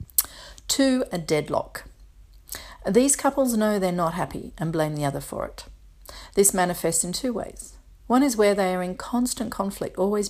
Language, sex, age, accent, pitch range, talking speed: English, female, 40-59, Australian, 155-200 Hz, 165 wpm